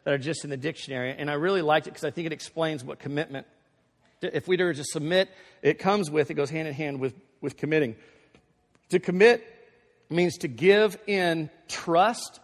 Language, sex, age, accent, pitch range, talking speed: English, male, 40-59, American, 140-175 Hz, 200 wpm